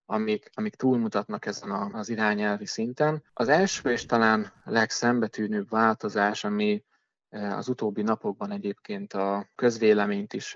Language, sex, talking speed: Hungarian, male, 120 wpm